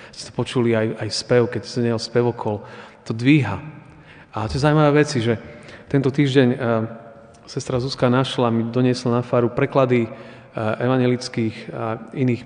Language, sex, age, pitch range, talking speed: Slovak, male, 40-59, 115-135 Hz, 155 wpm